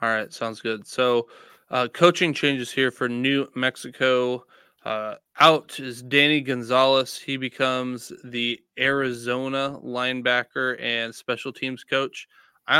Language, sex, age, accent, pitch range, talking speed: English, male, 20-39, American, 120-140 Hz, 125 wpm